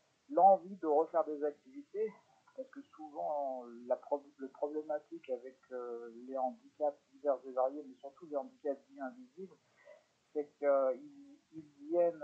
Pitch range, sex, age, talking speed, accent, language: 135-190 Hz, male, 50-69, 140 wpm, French, French